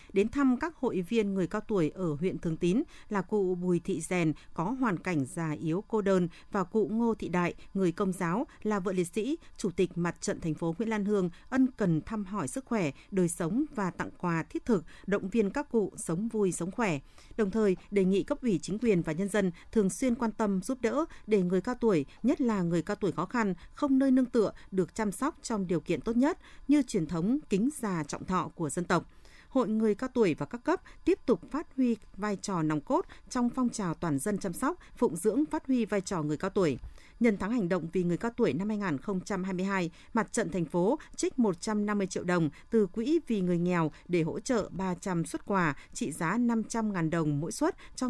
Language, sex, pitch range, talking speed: Vietnamese, female, 175-230 Hz, 230 wpm